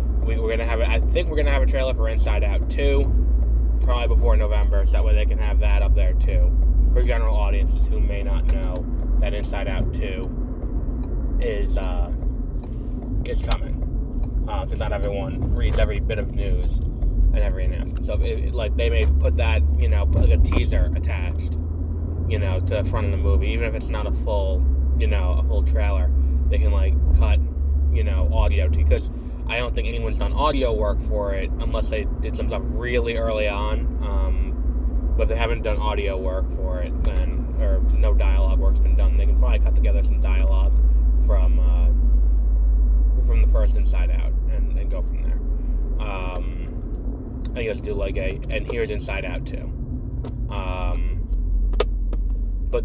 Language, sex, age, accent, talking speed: English, male, 20-39, American, 185 wpm